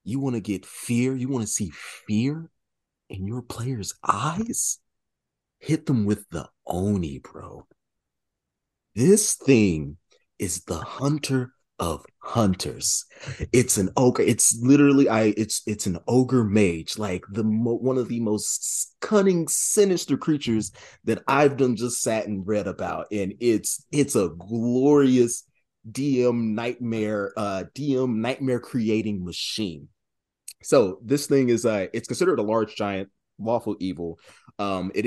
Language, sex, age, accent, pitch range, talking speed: English, male, 30-49, American, 95-125 Hz, 140 wpm